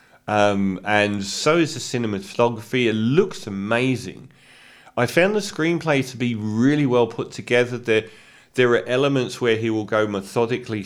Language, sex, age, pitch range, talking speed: English, male, 40-59, 100-120 Hz, 155 wpm